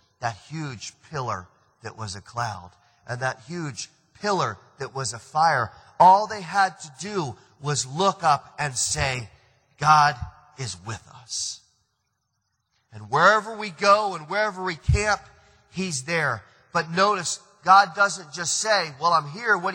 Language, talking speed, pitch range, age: English, 150 wpm, 125-180 Hz, 40-59